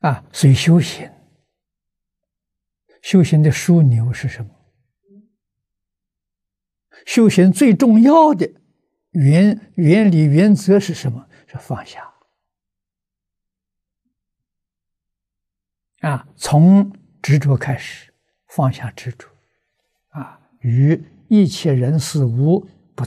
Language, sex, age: Chinese, male, 60-79